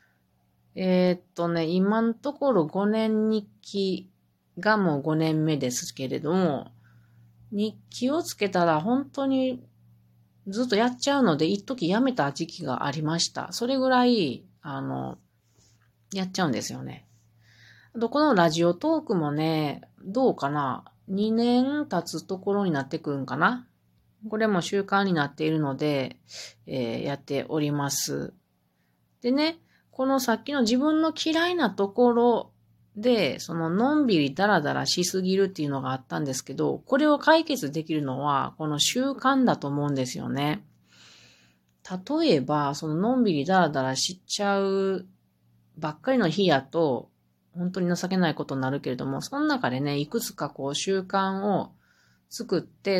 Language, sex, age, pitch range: Japanese, female, 40-59, 135-220 Hz